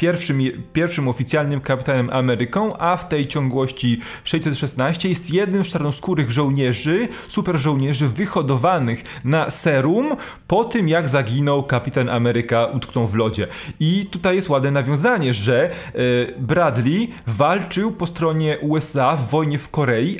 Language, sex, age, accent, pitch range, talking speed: Polish, male, 30-49, native, 130-175 Hz, 130 wpm